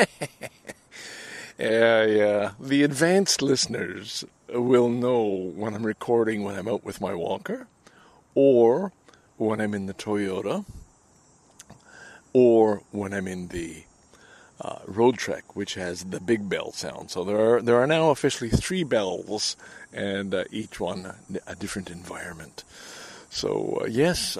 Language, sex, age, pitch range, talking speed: English, male, 50-69, 100-120 Hz, 135 wpm